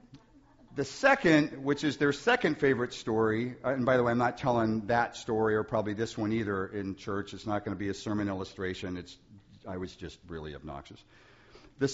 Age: 50-69